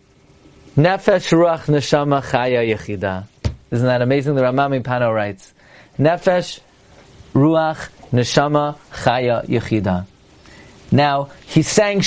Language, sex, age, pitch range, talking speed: English, male, 40-59, 140-210 Hz, 100 wpm